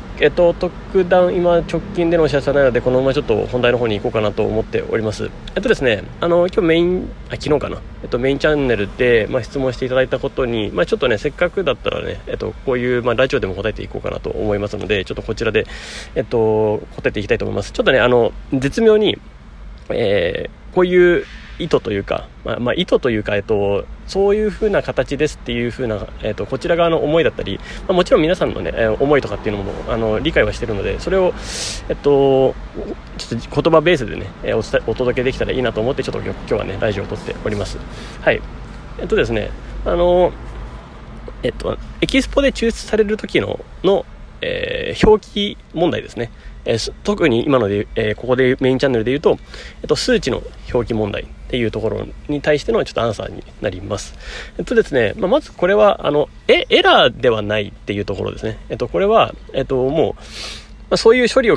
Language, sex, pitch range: Japanese, male, 110-175 Hz